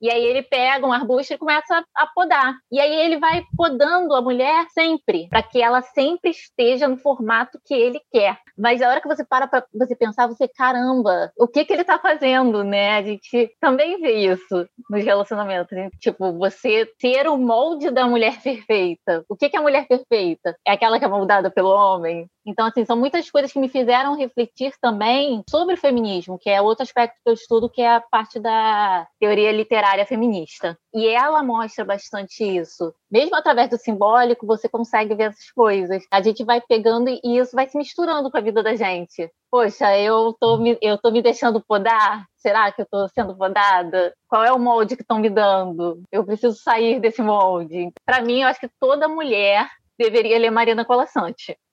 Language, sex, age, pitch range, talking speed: Portuguese, female, 20-39, 210-270 Hz, 200 wpm